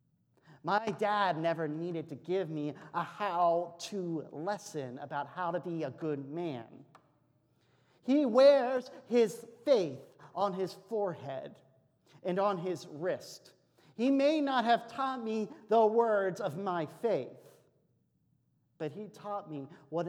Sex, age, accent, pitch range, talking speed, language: male, 40-59, American, 140-190 Hz, 130 wpm, English